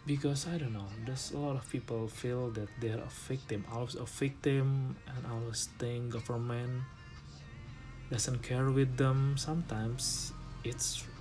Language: Indonesian